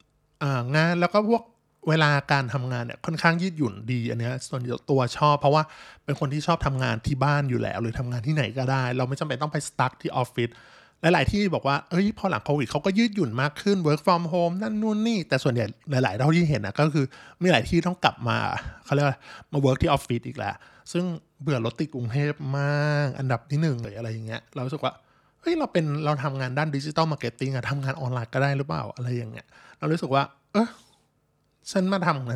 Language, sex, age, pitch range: Thai, male, 20-39, 125-155 Hz